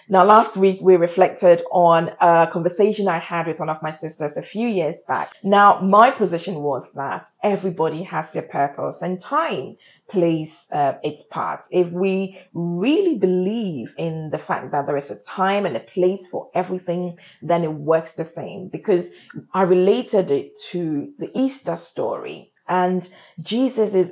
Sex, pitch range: female, 160-200 Hz